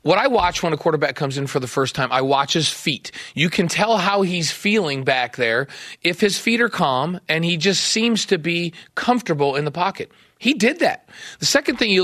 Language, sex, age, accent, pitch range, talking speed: English, male, 40-59, American, 160-220 Hz, 230 wpm